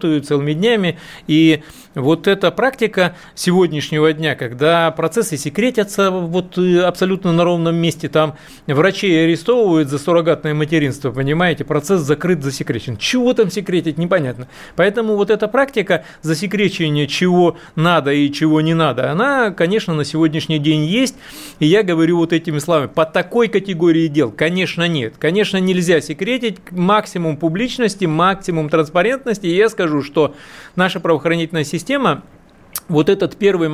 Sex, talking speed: male, 130 wpm